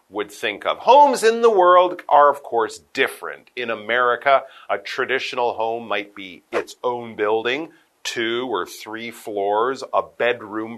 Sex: male